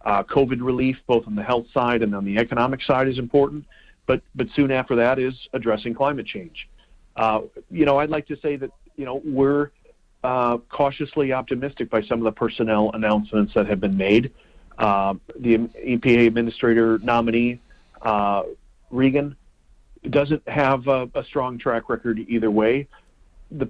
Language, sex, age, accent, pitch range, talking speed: English, male, 40-59, American, 110-135 Hz, 165 wpm